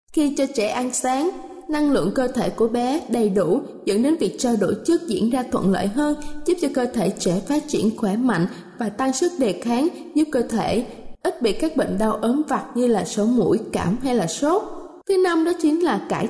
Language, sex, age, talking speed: Vietnamese, female, 20-39, 230 wpm